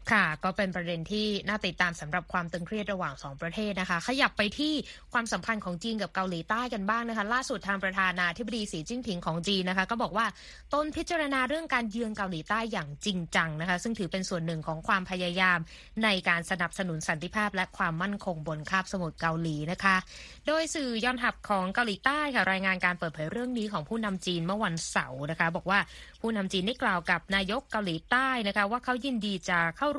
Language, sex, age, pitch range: Thai, female, 20-39, 170-225 Hz